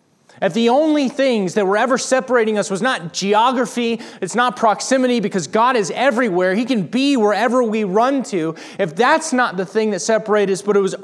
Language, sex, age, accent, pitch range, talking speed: English, male, 30-49, American, 215-270 Hz, 200 wpm